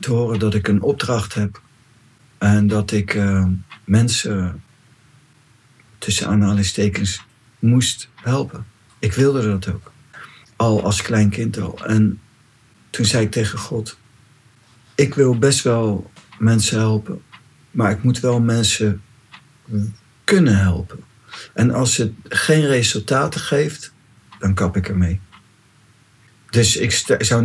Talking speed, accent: 125 wpm, Dutch